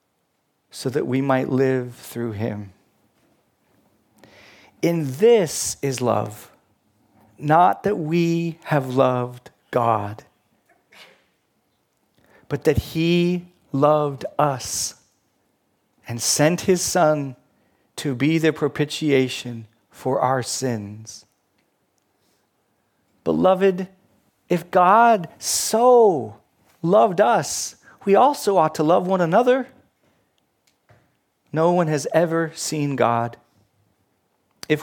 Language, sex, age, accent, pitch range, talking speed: English, male, 40-59, American, 115-160 Hz, 90 wpm